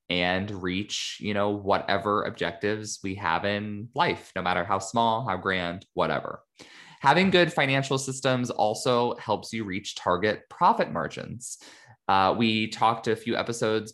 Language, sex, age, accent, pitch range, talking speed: English, male, 20-39, American, 95-120 Hz, 145 wpm